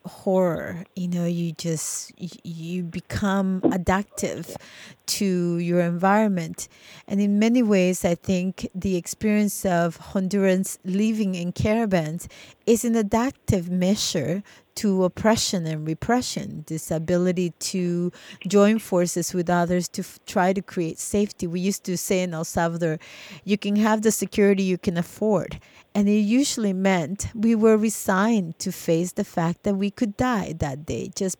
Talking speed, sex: 150 wpm, female